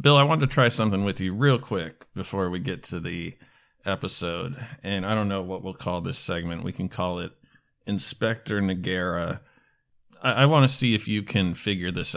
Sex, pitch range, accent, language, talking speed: male, 95-130 Hz, American, English, 200 wpm